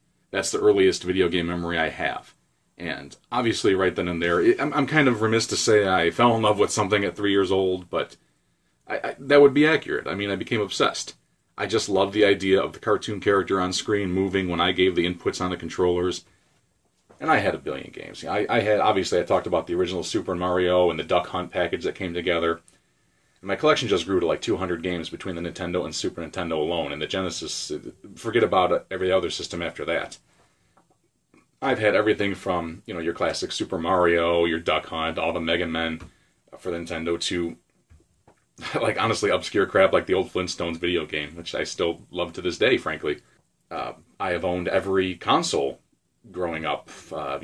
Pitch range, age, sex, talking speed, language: 85-105 Hz, 40-59, male, 200 wpm, English